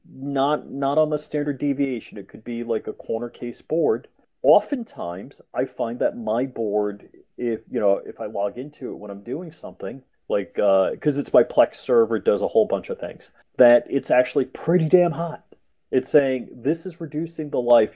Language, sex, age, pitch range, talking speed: English, male, 30-49, 110-145 Hz, 195 wpm